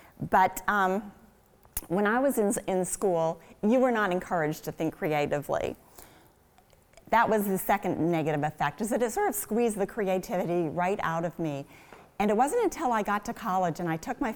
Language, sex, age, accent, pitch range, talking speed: English, female, 40-59, American, 180-230 Hz, 190 wpm